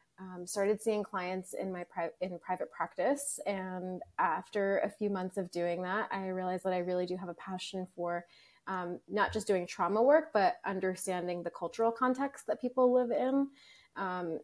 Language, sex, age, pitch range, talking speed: English, female, 20-39, 180-210 Hz, 180 wpm